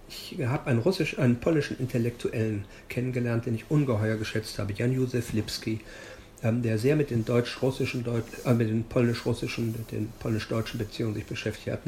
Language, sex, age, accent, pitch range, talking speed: German, male, 50-69, German, 110-140 Hz, 150 wpm